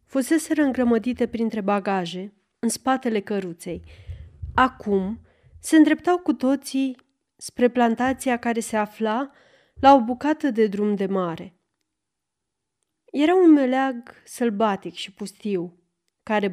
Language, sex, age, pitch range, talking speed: Romanian, female, 30-49, 195-250 Hz, 115 wpm